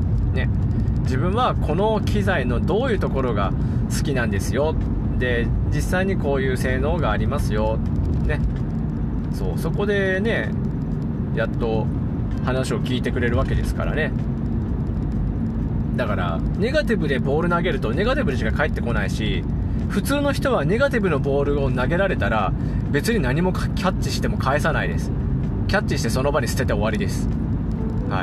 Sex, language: male, Japanese